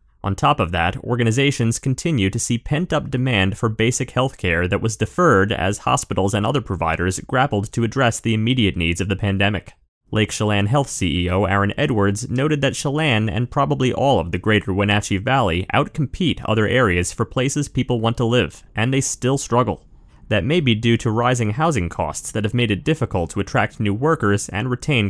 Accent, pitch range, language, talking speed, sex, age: American, 100-130 Hz, English, 190 wpm, male, 30-49